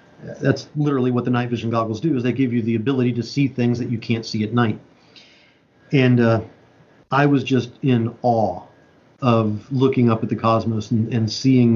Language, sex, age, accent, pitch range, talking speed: English, male, 40-59, American, 115-135 Hz, 200 wpm